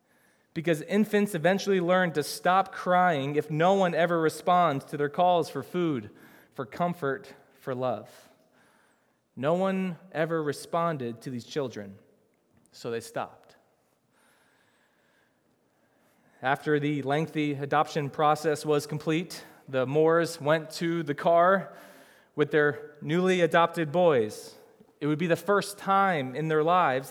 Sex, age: male, 20-39